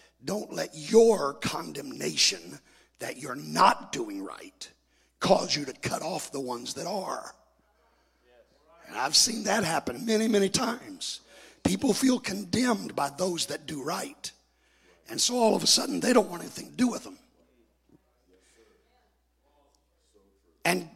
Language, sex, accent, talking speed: English, male, American, 140 wpm